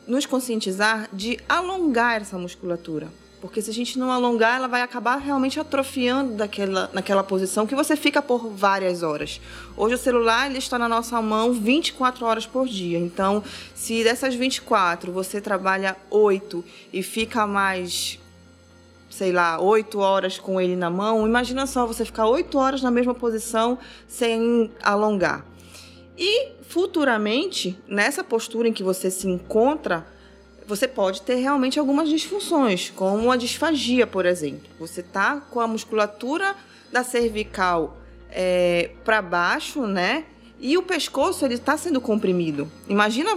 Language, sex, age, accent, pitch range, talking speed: Portuguese, female, 20-39, Brazilian, 190-255 Hz, 145 wpm